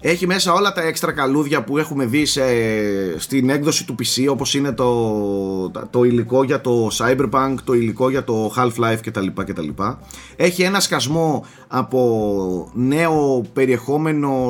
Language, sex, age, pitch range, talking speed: Greek, male, 30-49, 110-150 Hz, 145 wpm